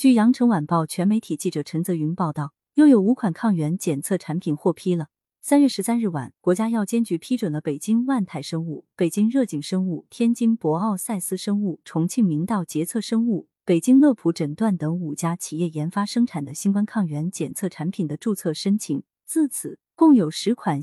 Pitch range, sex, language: 160-230 Hz, female, Chinese